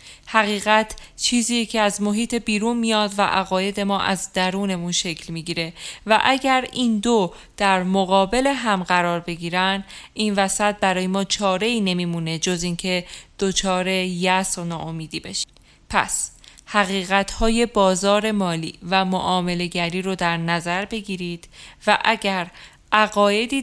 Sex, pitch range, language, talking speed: female, 185-220 Hz, Persian, 130 wpm